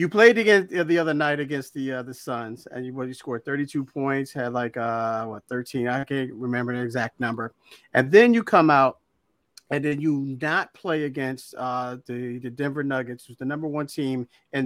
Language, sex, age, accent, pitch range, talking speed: English, male, 40-59, American, 130-165 Hz, 210 wpm